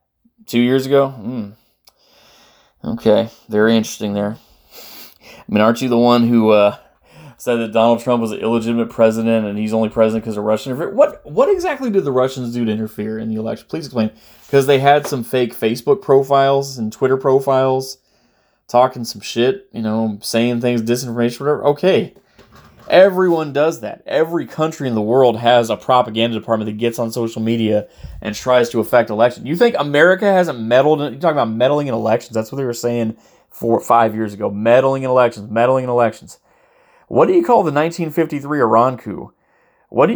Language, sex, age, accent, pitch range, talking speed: English, male, 20-39, American, 110-145 Hz, 185 wpm